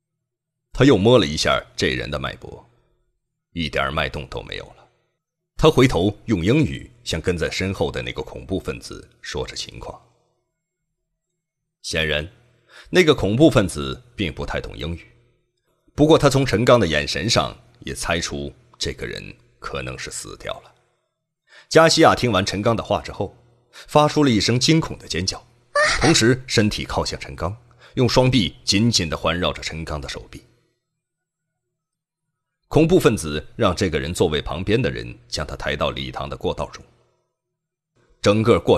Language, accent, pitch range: Chinese, native, 95-155 Hz